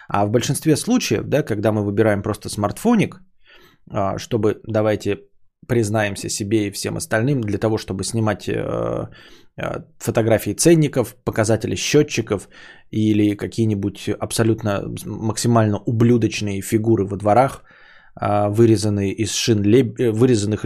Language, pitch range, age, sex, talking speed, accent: Russian, 105-140 Hz, 20-39, male, 100 wpm, native